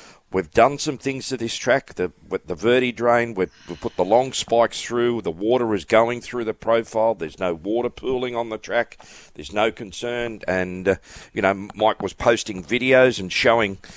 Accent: Australian